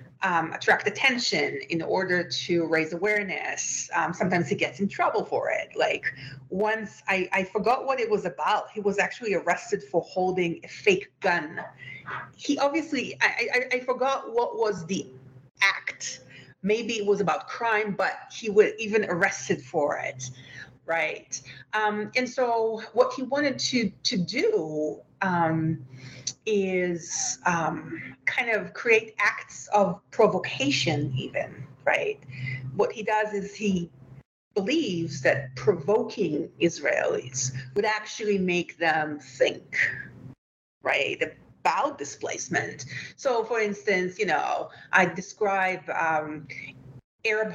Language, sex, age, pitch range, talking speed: English, female, 40-59, 160-230 Hz, 130 wpm